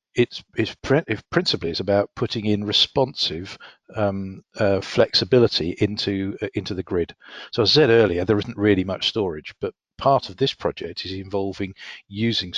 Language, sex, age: English, male, 50-69